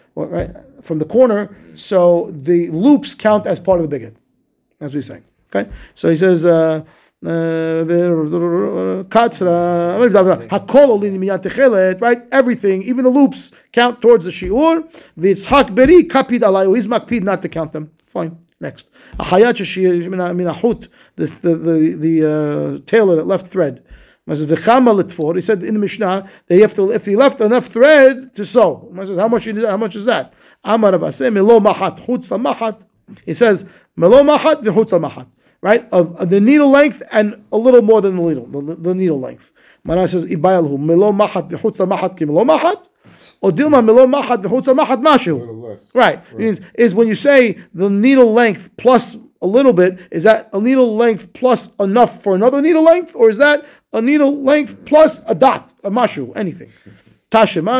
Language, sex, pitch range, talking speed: English, male, 175-245 Hz, 135 wpm